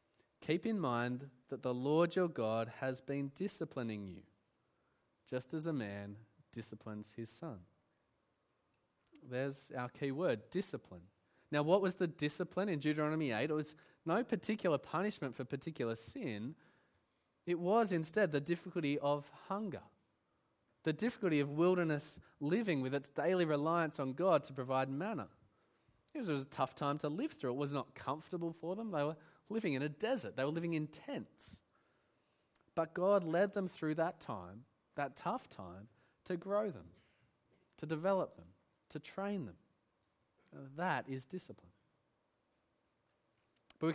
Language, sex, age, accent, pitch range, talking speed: English, male, 20-39, Australian, 130-175 Hz, 150 wpm